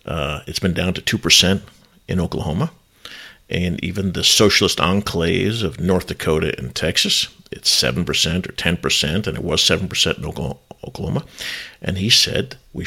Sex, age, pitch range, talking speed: male, 50-69, 90-105 Hz, 150 wpm